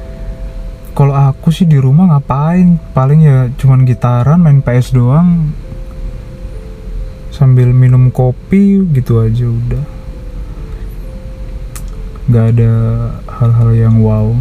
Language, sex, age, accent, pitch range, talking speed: Indonesian, male, 20-39, native, 120-150 Hz, 100 wpm